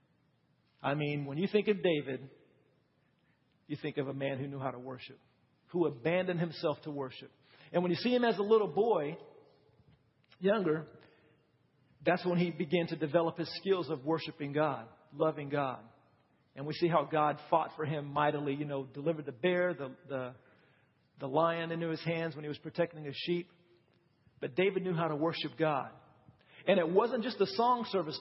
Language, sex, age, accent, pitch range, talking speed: English, male, 50-69, American, 145-205 Hz, 185 wpm